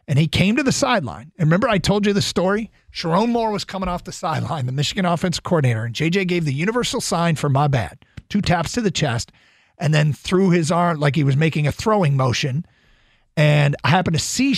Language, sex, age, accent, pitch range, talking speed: English, male, 40-59, American, 145-200 Hz, 225 wpm